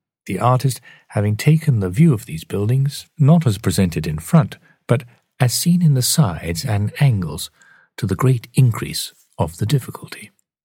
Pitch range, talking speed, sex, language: 100-150 Hz, 165 wpm, male, English